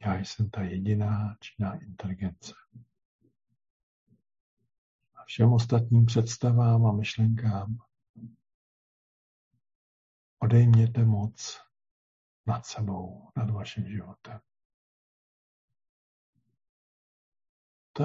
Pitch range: 95-115 Hz